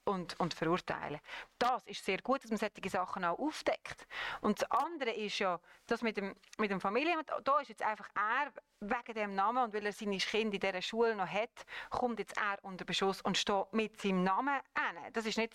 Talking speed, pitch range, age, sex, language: 215 wpm, 190-240 Hz, 30-49, female, German